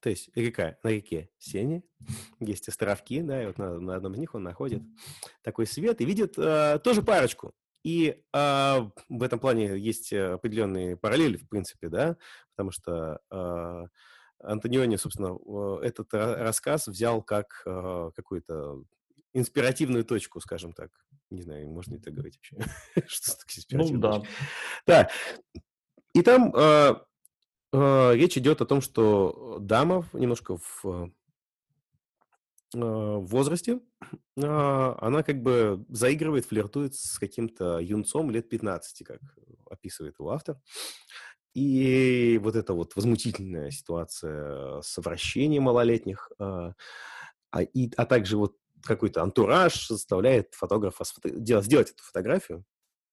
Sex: male